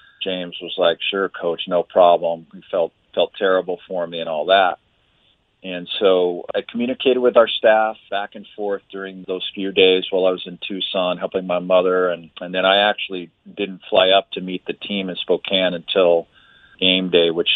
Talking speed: 190 wpm